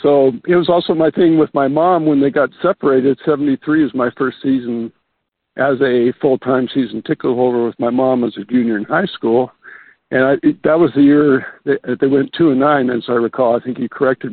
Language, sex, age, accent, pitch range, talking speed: English, male, 60-79, American, 130-170 Hz, 230 wpm